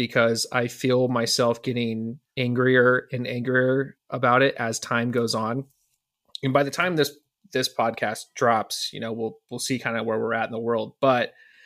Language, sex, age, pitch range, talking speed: English, male, 30-49, 120-140 Hz, 185 wpm